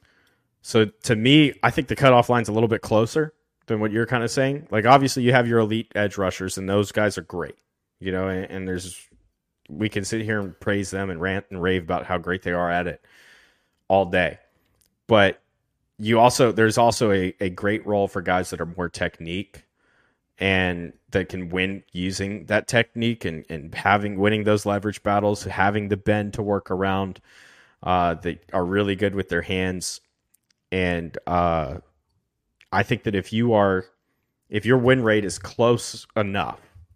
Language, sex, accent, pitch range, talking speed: English, male, American, 90-105 Hz, 185 wpm